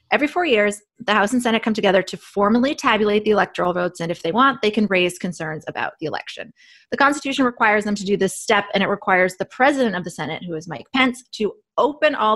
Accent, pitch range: American, 175-235 Hz